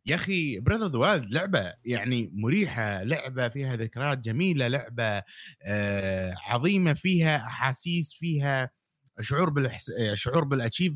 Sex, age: male, 30-49